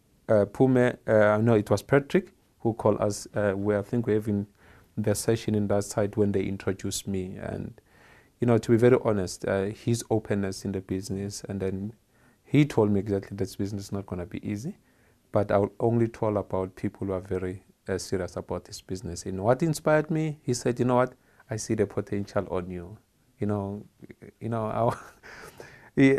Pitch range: 100-115 Hz